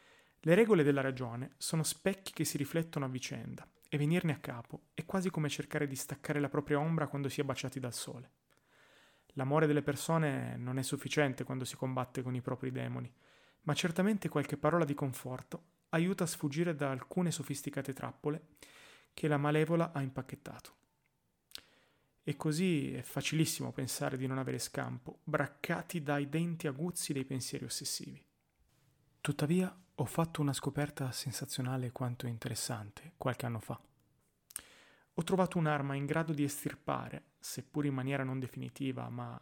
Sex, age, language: male, 30-49, Italian